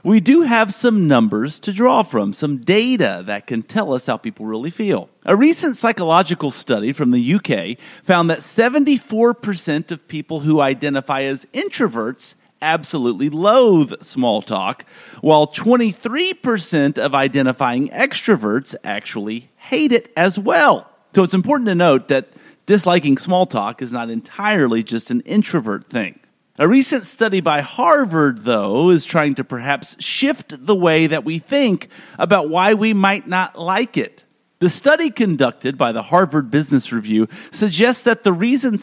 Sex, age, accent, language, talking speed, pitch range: male, 40-59, American, English, 155 wpm, 145-230 Hz